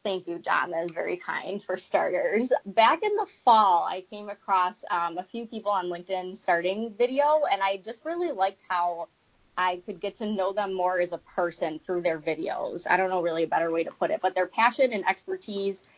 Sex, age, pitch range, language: female, 20-39, 175-220 Hz, English